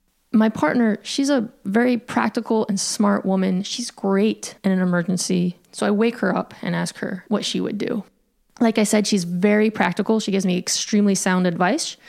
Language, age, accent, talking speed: English, 20-39, American, 190 wpm